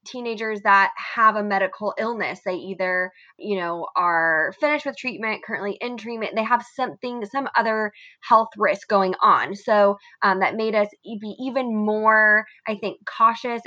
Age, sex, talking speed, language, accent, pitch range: 20-39, female, 160 wpm, English, American, 190-230 Hz